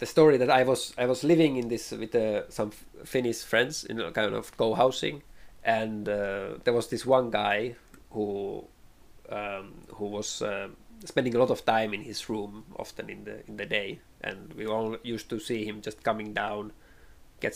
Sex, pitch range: male, 105-130 Hz